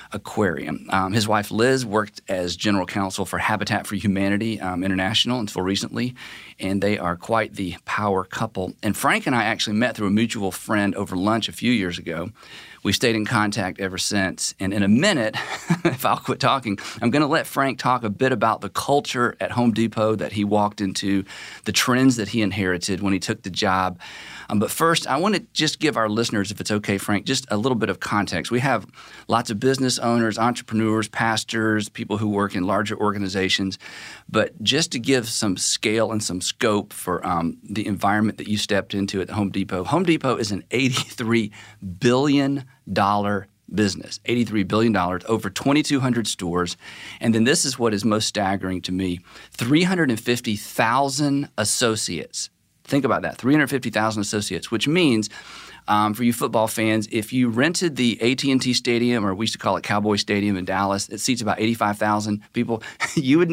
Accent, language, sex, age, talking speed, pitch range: American, English, male, 40-59, 185 wpm, 100-120 Hz